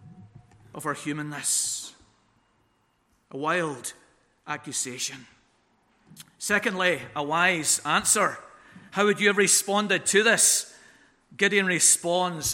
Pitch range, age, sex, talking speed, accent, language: 165-215 Hz, 50-69, male, 90 wpm, British, English